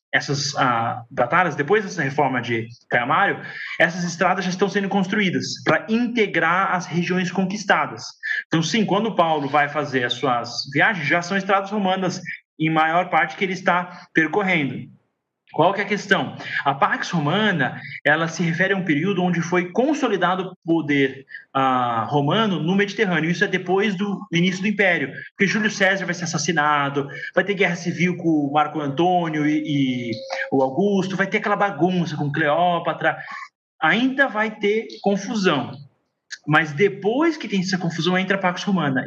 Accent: Brazilian